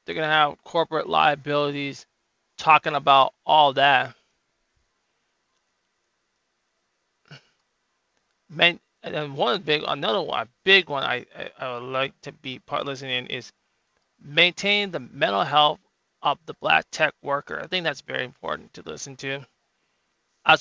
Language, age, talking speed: English, 20-39, 135 wpm